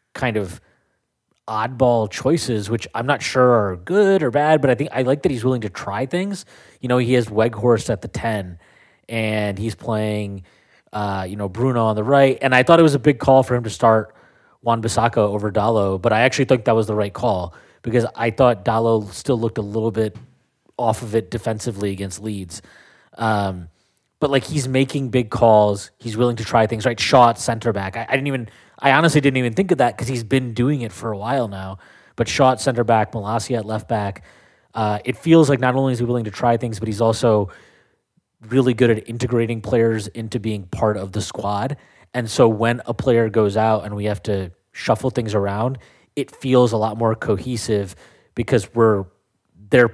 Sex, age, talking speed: male, 20-39, 210 wpm